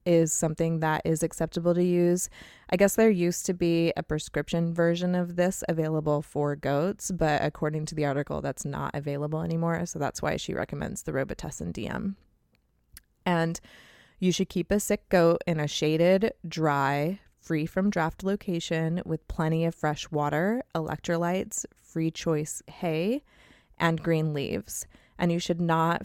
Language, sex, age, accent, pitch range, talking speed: English, female, 20-39, American, 155-185 Hz, 160 wpm